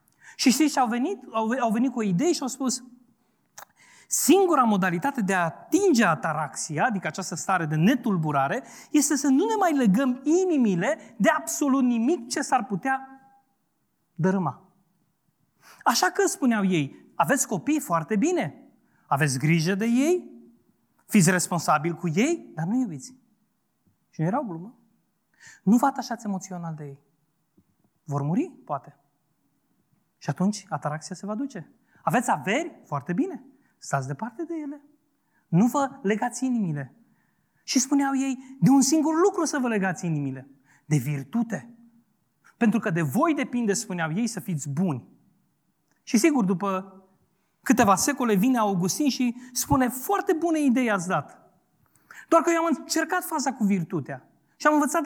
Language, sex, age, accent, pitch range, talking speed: Romanian, male, 30-49, native, 175-280 Hz, 145 wpm